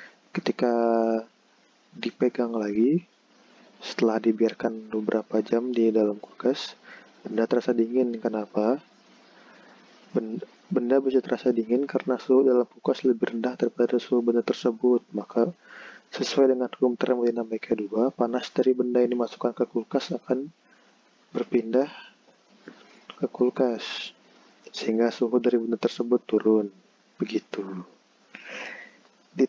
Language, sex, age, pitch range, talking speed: Indonesian, male, 20-39, 115-125 Hz, 110 wpm